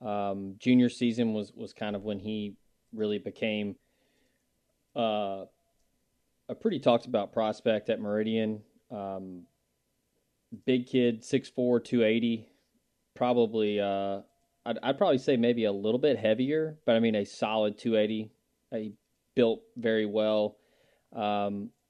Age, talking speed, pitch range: 20-39, 130 wpm, 105-120 Hz